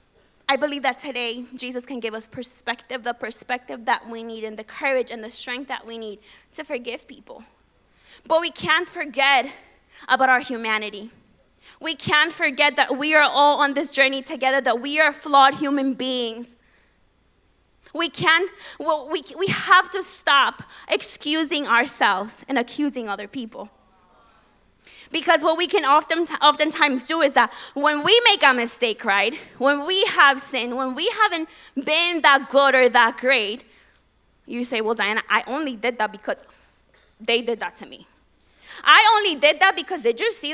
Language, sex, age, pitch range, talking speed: English, female, 20-39, 240-315 Hz, 170 wpm